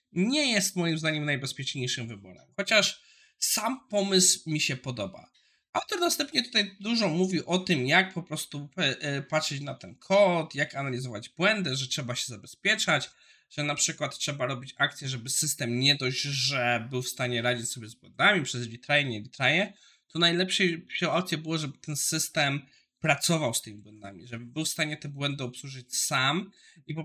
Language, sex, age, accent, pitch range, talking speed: Polish, male, 20-39, native, 125-175 Hz, 170 wpm